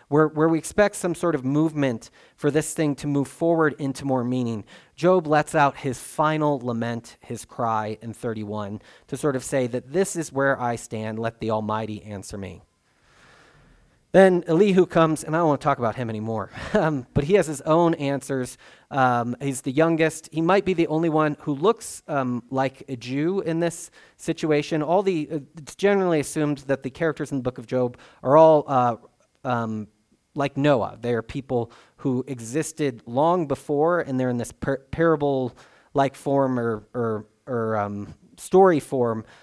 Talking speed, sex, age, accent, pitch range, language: 185 wpm, male, 30-49, American, 120-155 Hz, English